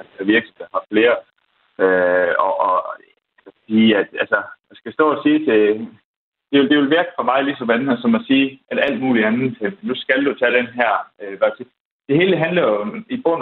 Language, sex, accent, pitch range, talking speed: Danish, male, native, 120-175 Hz, 190 wpm